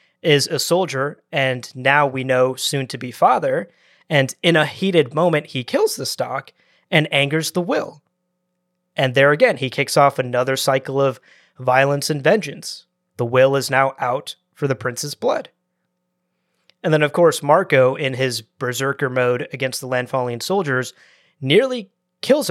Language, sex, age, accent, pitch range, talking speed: English, male, 30-49, American, 130-160 Hz, 160 wpm